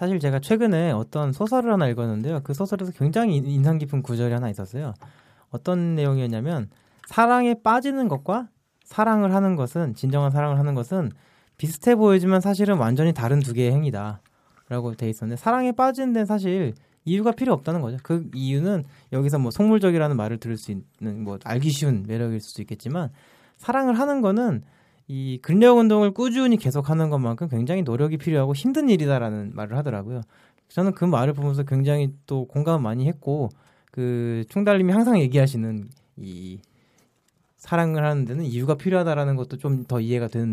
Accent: native